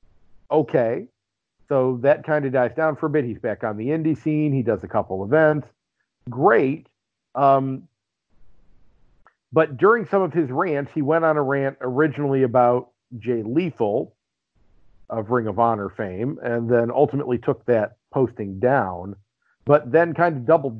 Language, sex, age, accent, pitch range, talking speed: English, male, 50-69, American, 115-140 Hz, 160 wpm